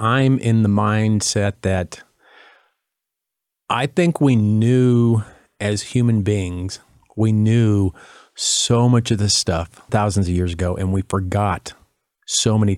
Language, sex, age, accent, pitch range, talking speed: English, male, 40-59, American, 95-115 Hz, 130 wpm